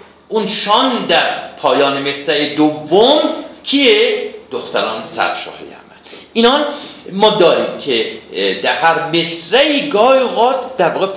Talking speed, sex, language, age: 115 wpm, male, Persian, 50-69